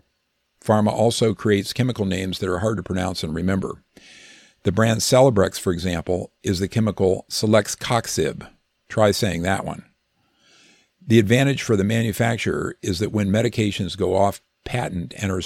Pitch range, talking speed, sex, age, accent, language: 90-110 Hz, 150 wpm, male, 50-69, American, English